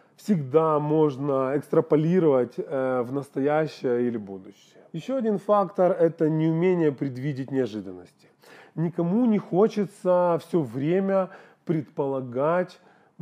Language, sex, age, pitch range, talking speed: Russian, male, 30-49, 145-190 Hz, 95 wpm